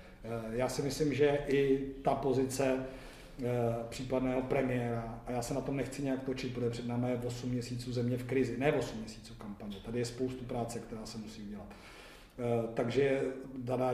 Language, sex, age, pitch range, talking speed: Czech, male, 40-59, 115-130 Hz, 170 wpm